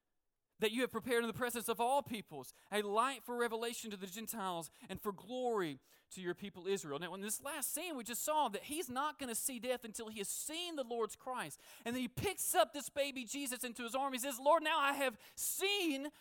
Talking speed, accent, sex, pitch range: 235 wpm, American, male, 195-260 Hz